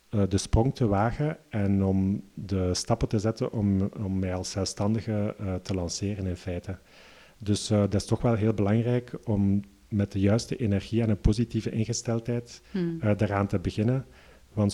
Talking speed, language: 170 wpm, Dutch